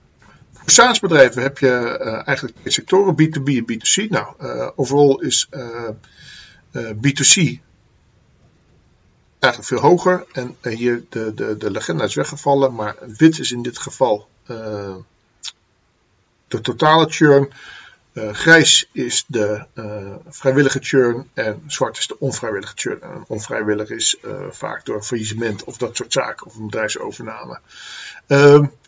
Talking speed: 135 wpm